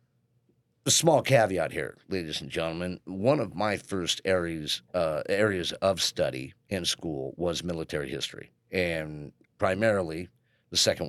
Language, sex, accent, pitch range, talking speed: English, male, American, 85-105 Hz, 135 wpm